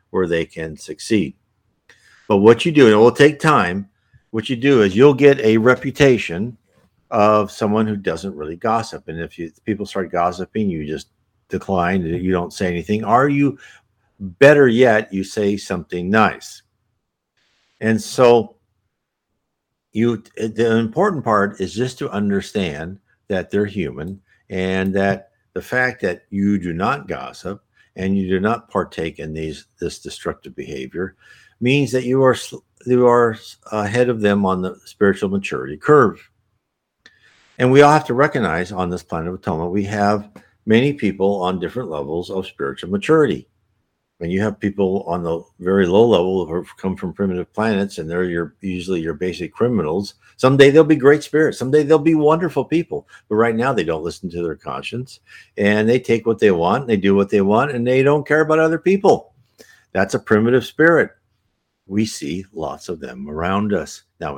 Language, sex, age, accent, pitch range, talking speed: English, male, 60-79, American, 95-125 Hz, 170 wpm